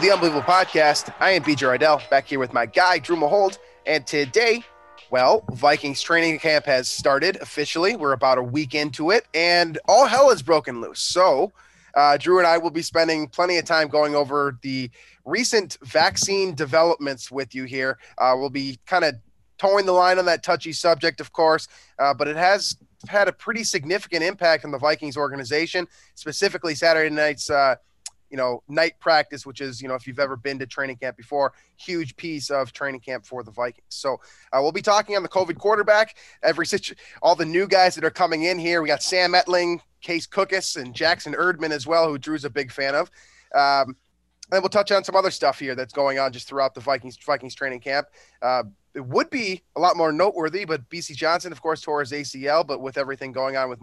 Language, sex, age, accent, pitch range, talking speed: English, male, 20-39, American, 135-175 Hz, 210 wpm